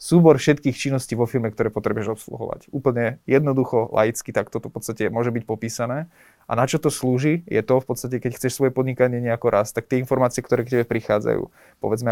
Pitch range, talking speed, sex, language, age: 120-135 Hz, 200 wpm, male, Slovak, 20-39